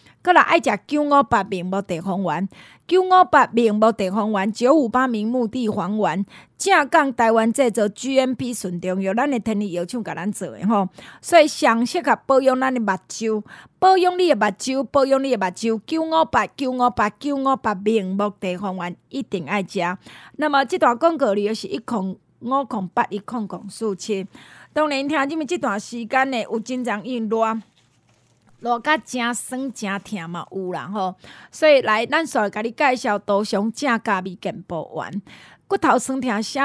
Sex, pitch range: female, 200-265 Hz